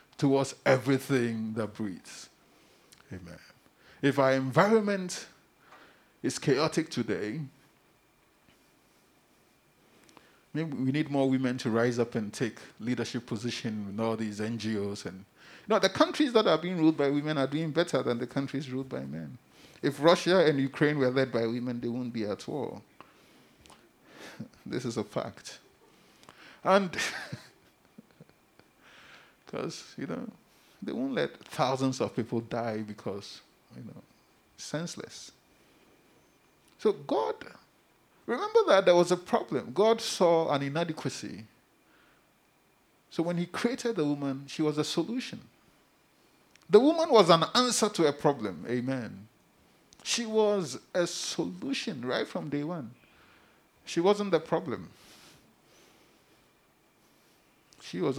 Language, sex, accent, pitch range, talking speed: English, male, Nigerian, 120-180 Hz, 125 wpm